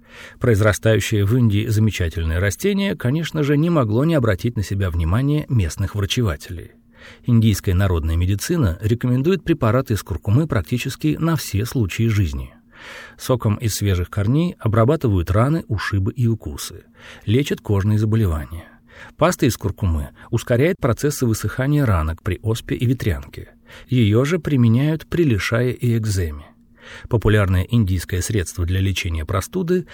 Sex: male